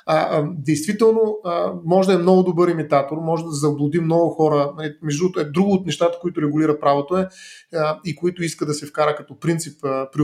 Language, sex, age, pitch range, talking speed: Bulgarian, male, 30-49, 150-185 Hz, 205 wpm